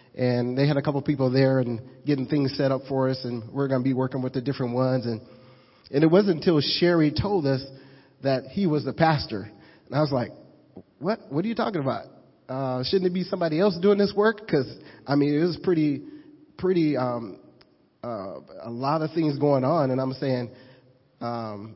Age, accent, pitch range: 30-49, American, 125-145 Hz